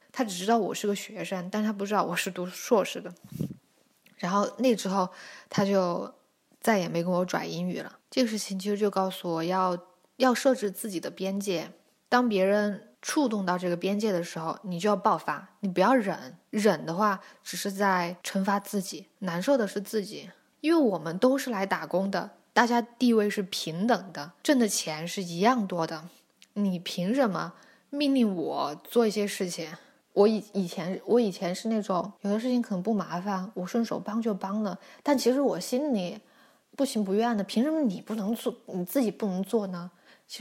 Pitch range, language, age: 185-240 Hz, Chinese, 10-29